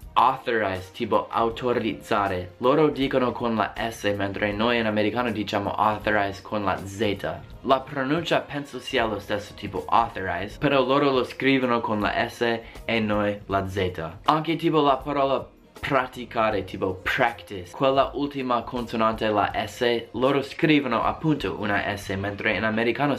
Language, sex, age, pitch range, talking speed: Italian, male, 20-39, 100-130 Hz, 145 wpm